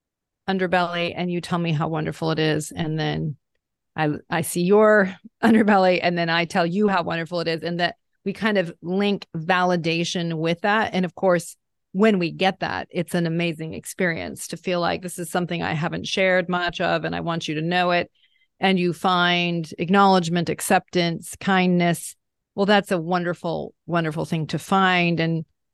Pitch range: 170-195 Hz